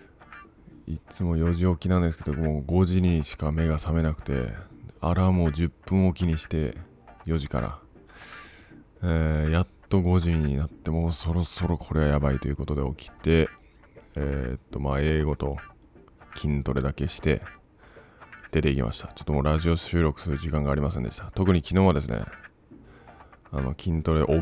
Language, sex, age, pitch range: Japanese, male, 20-39, 75-90 Hz